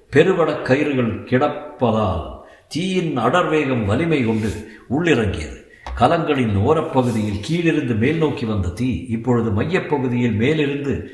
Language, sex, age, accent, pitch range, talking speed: Tamil, male, 50-69, native, 105-150 Hz, 90 wpm